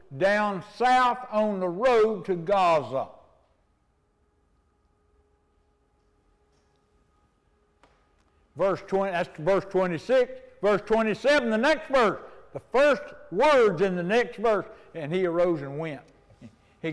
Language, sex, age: English, male, 60-79